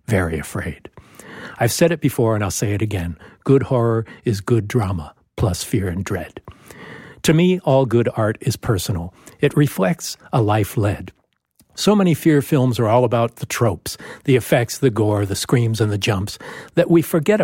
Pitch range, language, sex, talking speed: 110-145 Hz, English, male, 180 wpm